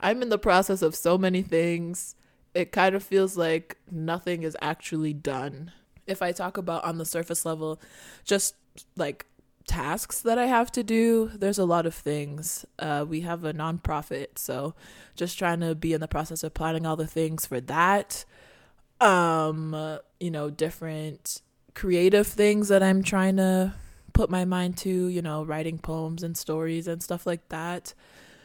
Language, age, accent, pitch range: English, 20-39, American, 155-185 Hz